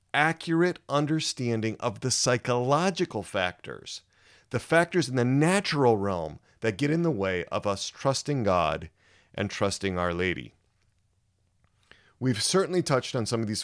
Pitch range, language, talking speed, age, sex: 95-130 Hz, English, 140 wpm, 40-59, male